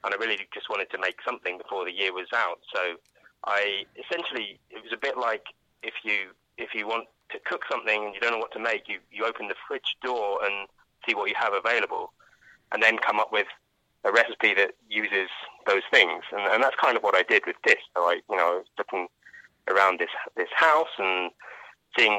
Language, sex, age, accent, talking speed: English, male, 20-39, British, 215 wpm